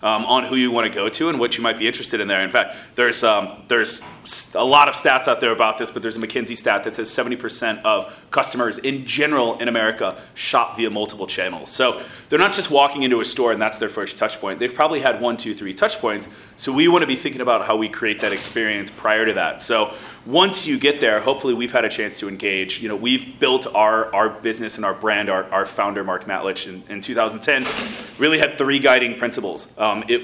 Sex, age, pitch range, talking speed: male, 30-49, 110-145 Hz, 240 wpm